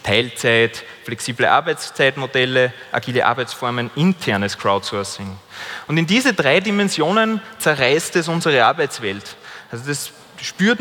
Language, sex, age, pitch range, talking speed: German, male, 30-49, 130-185 Hz, 105 wpm